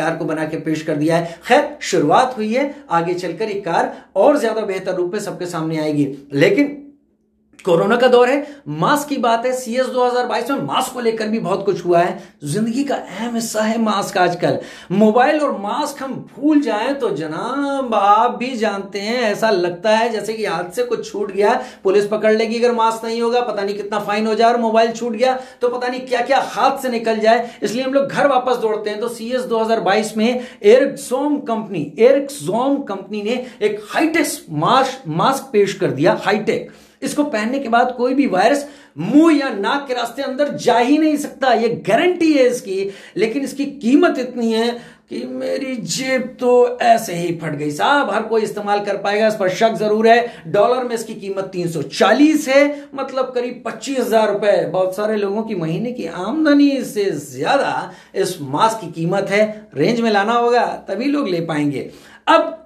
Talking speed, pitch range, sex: 190 wpm, 200-260 Hz, male